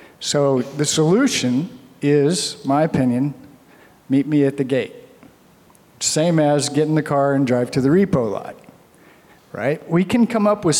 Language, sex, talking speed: English, male, 160 wpm